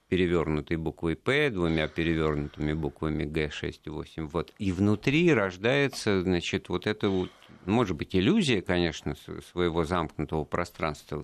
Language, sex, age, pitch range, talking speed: Russian, male, 50-69, 85-120 Hz, 125 wpm